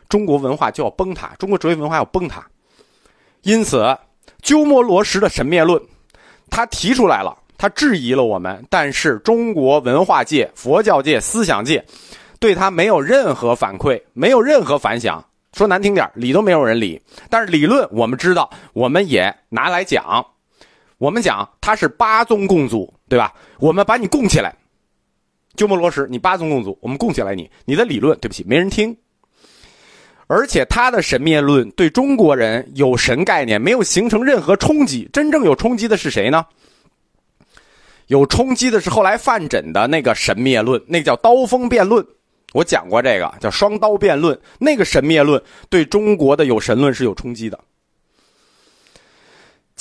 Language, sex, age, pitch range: Chinese, male, 30-49, 140-225 Hz